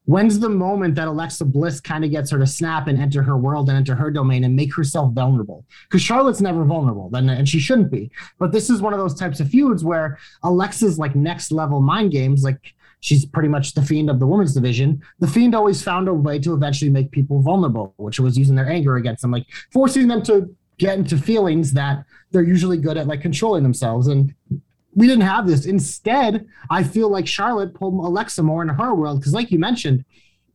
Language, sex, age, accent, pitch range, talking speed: English, male, 30-49, American, 140-195 Hz, 220 wpm